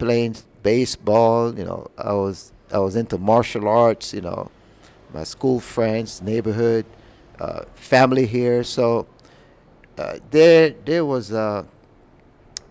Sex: male